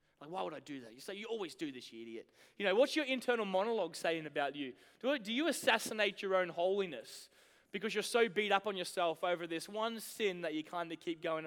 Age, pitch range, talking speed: 20-39, 165-235 Hz, 240 wpm